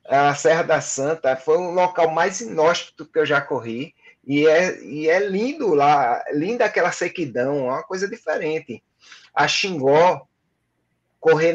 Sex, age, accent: male, 20-39, Brazilian